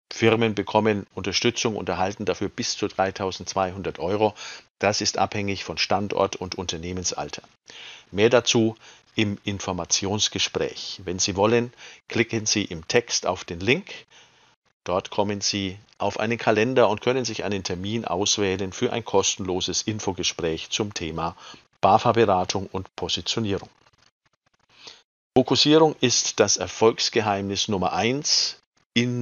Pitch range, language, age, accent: 95-115 Hz, German, 50-69, German